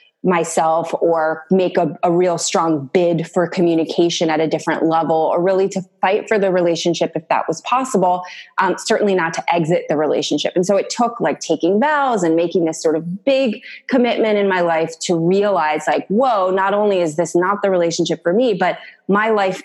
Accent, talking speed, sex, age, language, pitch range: American, 200 wpm, female, 20-39, English, 165-195 Hz